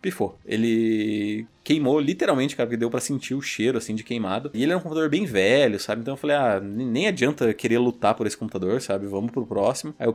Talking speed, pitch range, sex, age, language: 230 wpm, 105-130 Hz, male, 20-39, Portuguese